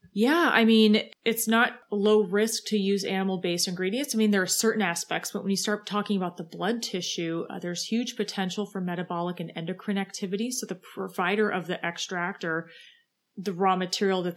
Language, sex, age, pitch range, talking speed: English, female, 30-49, 175-205 Hz, 190 wpm